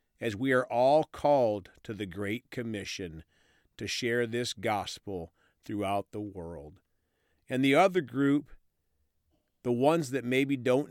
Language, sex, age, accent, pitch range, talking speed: English, male, 50-69, American, 100-130 Hz, 140 wpm